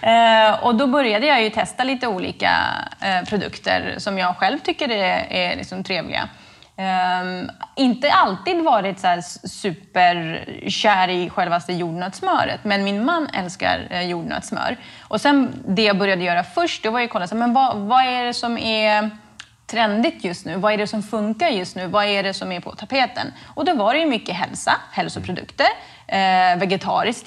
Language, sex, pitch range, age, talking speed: Swedish, female, 190-255 Hz, 20-39, 175 wpm